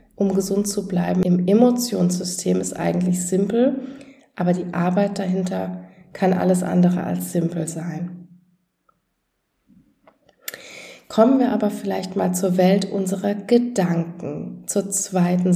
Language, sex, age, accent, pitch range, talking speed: German, female, 20-39, German, 175-200 Hz, 115 wpm